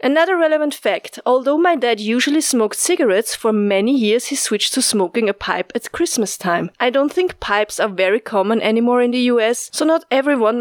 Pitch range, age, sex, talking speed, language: 205-260 Hz, 30-49, female, 200 wpm, English